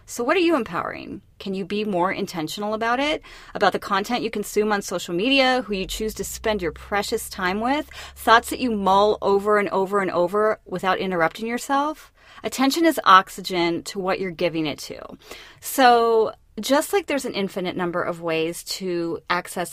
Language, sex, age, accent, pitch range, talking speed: English, female, 30-49, American, 190-280 Hz, 185 wpm